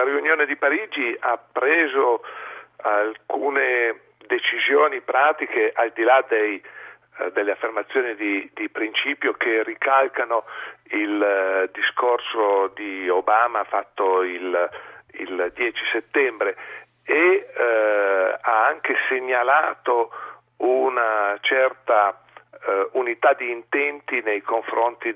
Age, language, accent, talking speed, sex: 50-69, Italian, native, 95 wpm, male